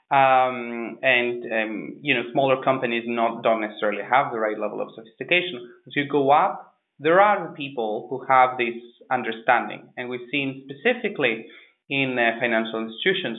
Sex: male